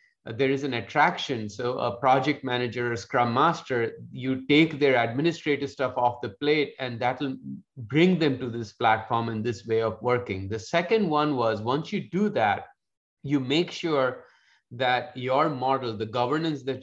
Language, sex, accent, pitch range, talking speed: English, male, Indian, 120-140 Hz, 180 wpm